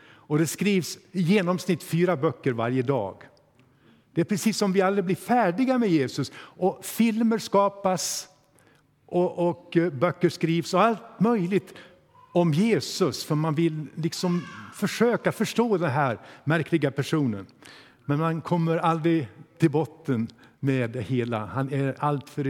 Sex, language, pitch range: male, Swedish, 140-195 Hz